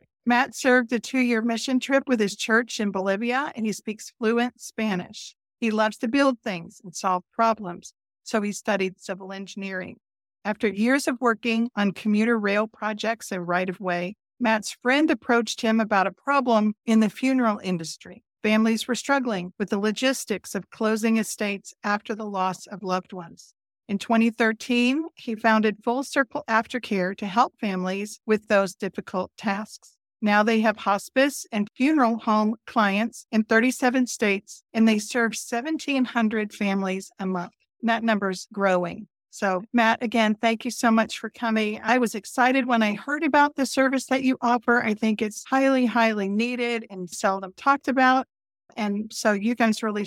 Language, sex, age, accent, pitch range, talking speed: English, female, 50-69, American, 200-240 Hz, 165 wpm